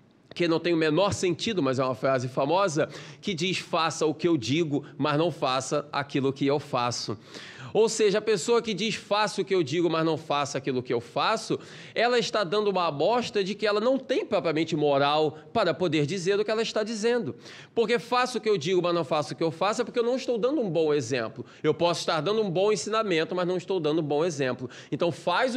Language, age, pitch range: Portuguese, 20-39, 145-205 Hz